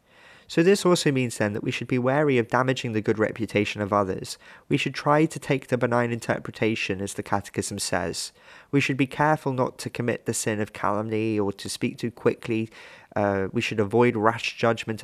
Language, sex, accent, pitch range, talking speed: English, male, British, 105-130 Hz, 205 wpm